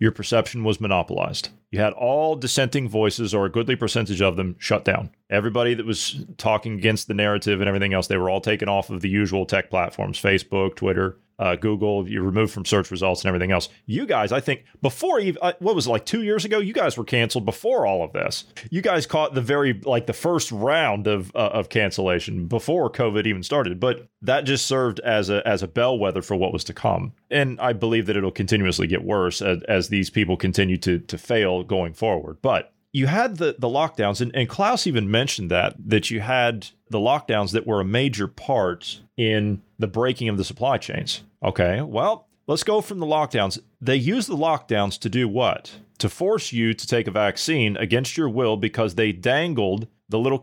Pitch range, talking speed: 100-135 Hz, 210 wpm